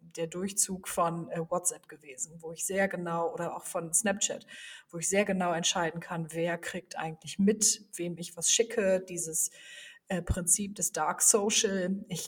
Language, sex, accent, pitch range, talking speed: German, female, German, 170-200 Hz, 170 wpm